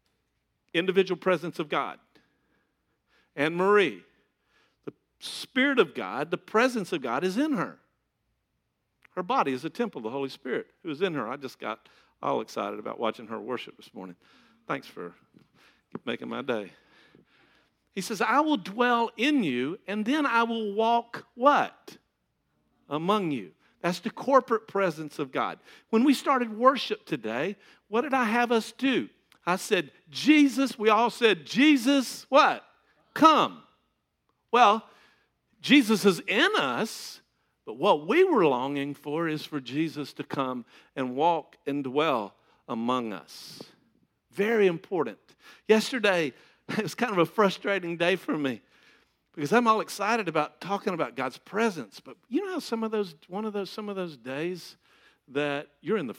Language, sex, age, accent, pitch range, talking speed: English, male, 50-69, American, 155-240 Hz, 160 wpm